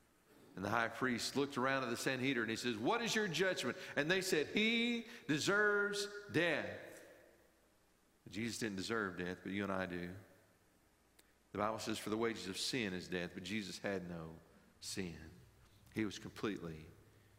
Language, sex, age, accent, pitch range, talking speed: English, male, 50-69, American, 90-115 Hz, 170 wpm